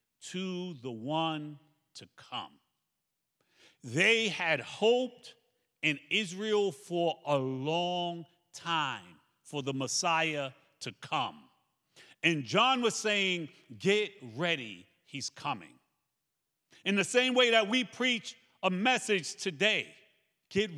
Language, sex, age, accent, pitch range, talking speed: English, male, 50-69, American, 165-230 Hz, 110 wpm